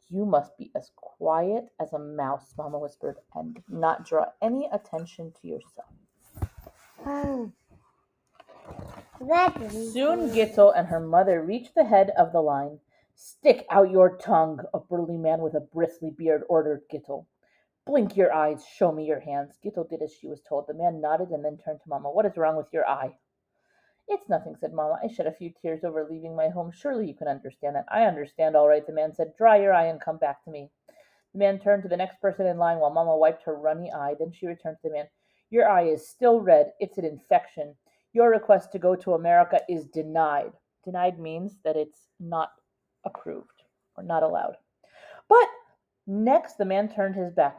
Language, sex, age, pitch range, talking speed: English, female, 30-49, 155-215 Hz, 195 wpm